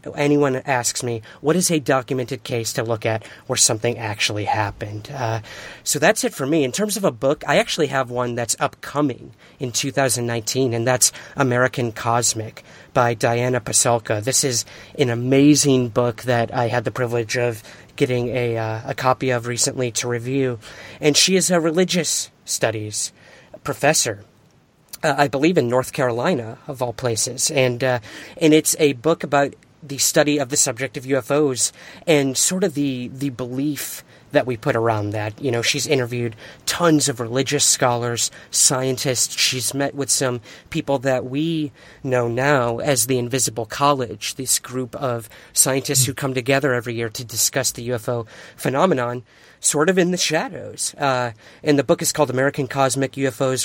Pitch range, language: 115-140 Hz, English